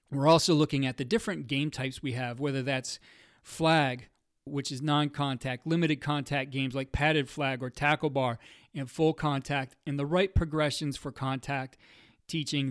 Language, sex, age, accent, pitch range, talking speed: English, male, 40-59, American, 125-150 Hz, 165 wpm